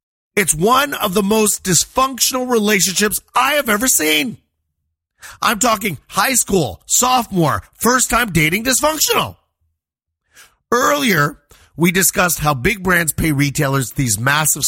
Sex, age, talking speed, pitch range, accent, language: male, 30-49, 120 wpm, 130-200 Hz, American, English